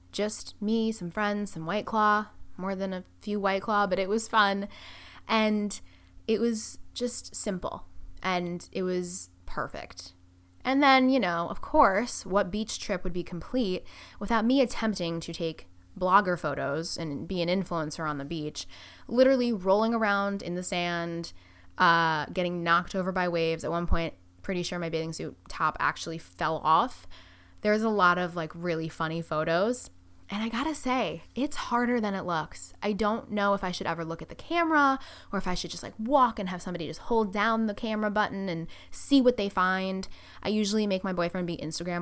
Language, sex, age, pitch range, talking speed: English, female, 10-29, 165-215 Hz, 190 wpm